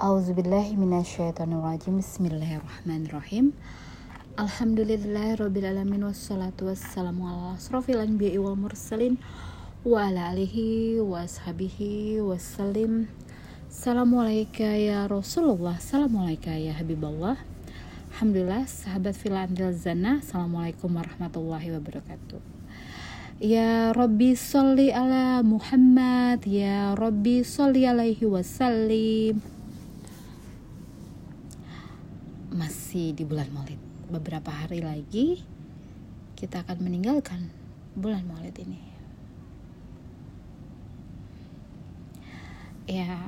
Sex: female